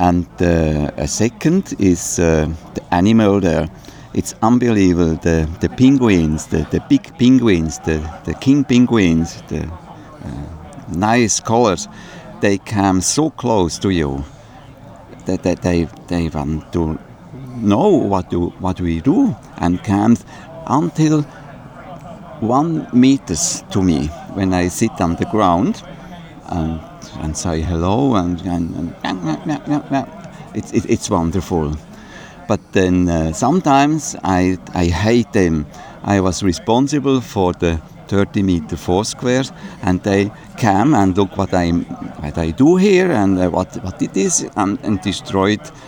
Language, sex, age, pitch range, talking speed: English, male, 50-69, 85-125 Hz, 135 wpm